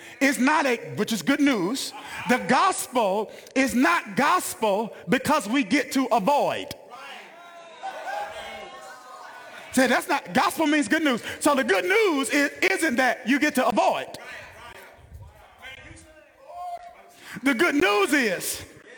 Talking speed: 115 wpm